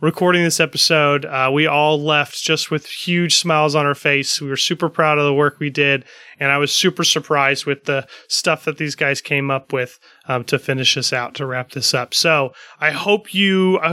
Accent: American